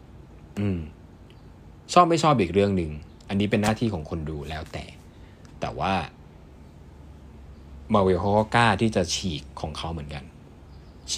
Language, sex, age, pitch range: Thai, male, 20-39, 80-115 Hz